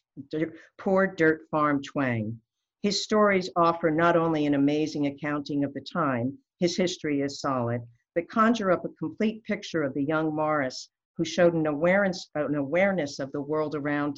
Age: 50-69